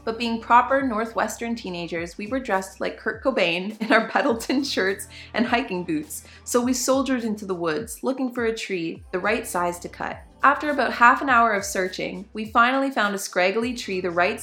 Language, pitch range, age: English, 185-230 Hz, 20-39